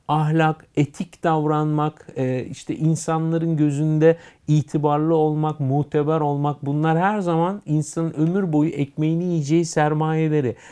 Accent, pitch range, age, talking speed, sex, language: native, 130-165 Hz, 50-69, 105 wpm, male, Turkish